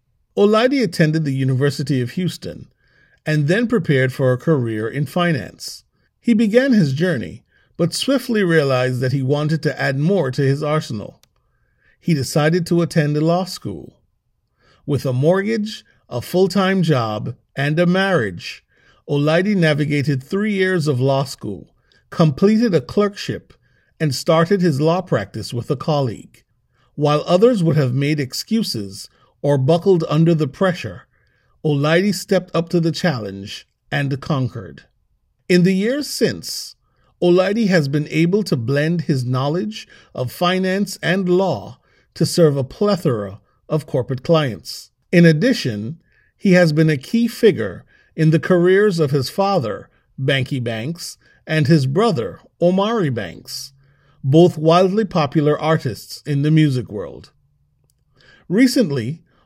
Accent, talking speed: American, 135 wpm